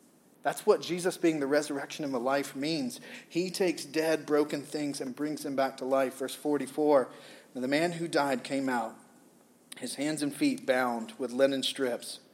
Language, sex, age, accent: English, male, 30-49, American